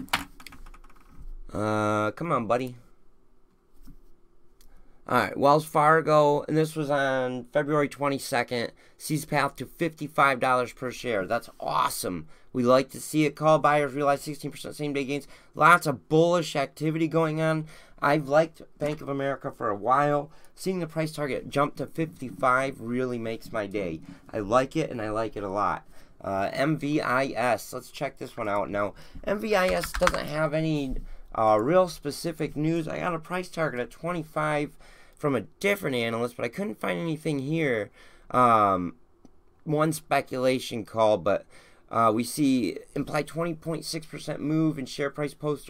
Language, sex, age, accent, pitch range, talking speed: English, male, 30-49, American, 125-155 Hz, 150 wpm